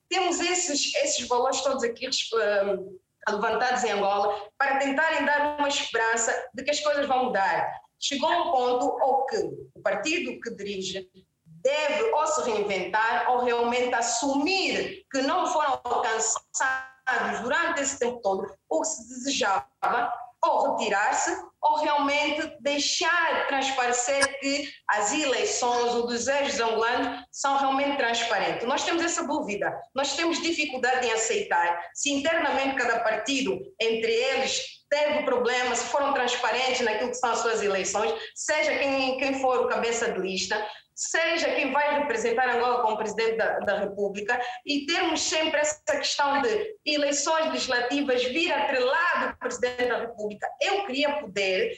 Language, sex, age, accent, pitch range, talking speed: Portuguese, female, 20-39, Brazilian, 235-300 Hz, 145 wpm